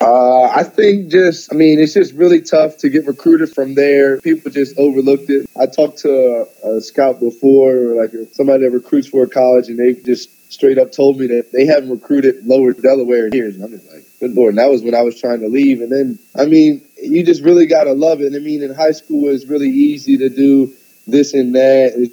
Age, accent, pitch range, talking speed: 20-39, American, 120-140 Hz, 245 wpm